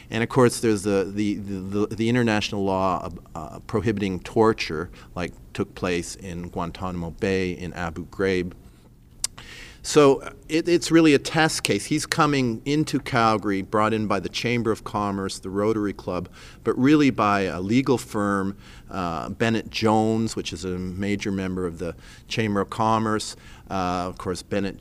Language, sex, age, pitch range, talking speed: English, male, 40-59, 95-115 Hz, 150 wpm